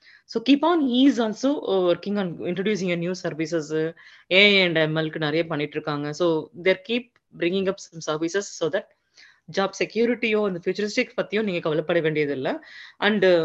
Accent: native